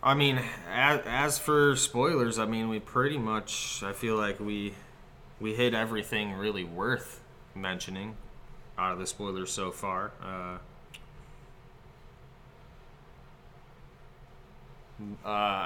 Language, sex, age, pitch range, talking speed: English, male, 20-39, 95-115 Hz, 110 wpm